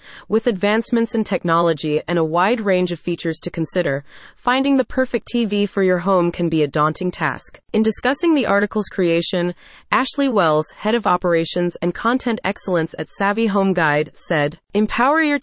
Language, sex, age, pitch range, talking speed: English, female, 30-49, 175-235 Hz, 170 wpm